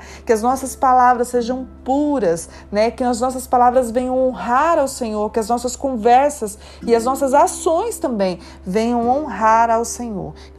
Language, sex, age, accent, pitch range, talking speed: Portuguese, female, 30-49, Brazilian, 205-255 Hz, 165 wpm